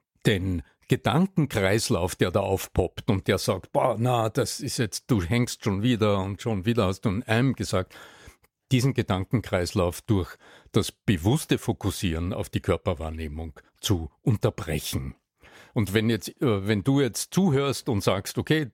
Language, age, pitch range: German, 60-79, 100-125 Hz